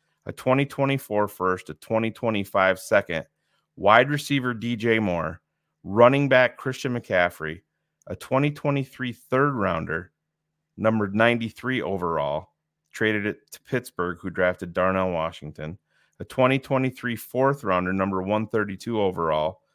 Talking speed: 110 wpm